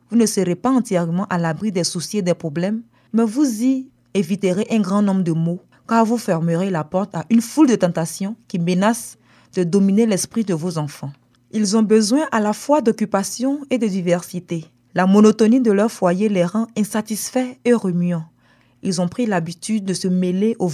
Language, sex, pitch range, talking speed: French, female, 175-220 Hz, 195 wpm